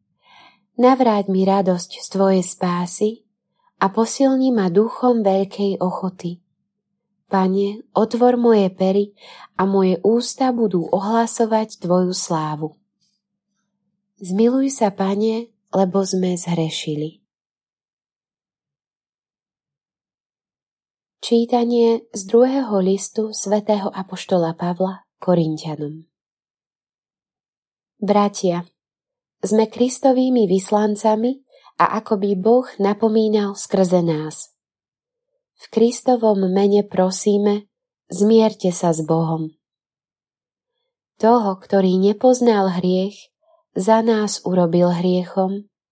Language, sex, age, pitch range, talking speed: Slovak, female, 20-39, 185-225 Hz, 85 wpm